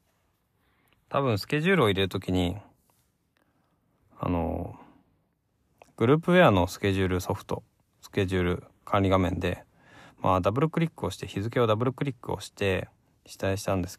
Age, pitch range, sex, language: 20-39, 95-130 Hz, male, Japanese